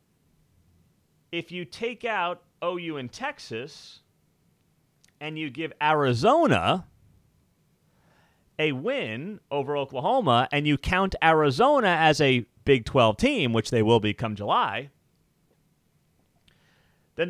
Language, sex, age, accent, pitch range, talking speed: English, male, 30-49, American, 125-170 Hz, 110 wpm